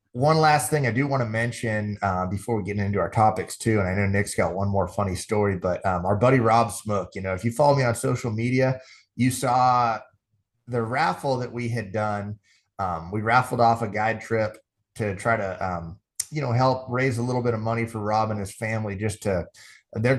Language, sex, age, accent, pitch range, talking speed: English, male, 30-49, American, 100-125 Hz, 225 wpm